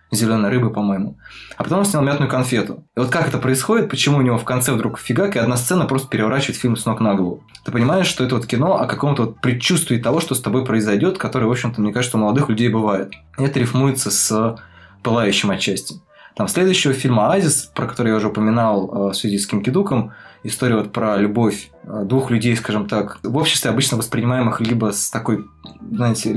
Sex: male